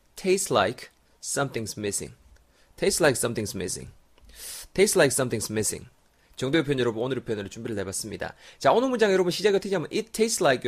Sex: male